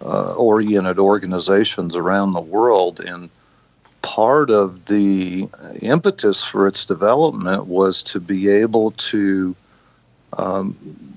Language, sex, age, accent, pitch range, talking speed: English, male, 50-69, American, 95-110 Hz, 105 wpm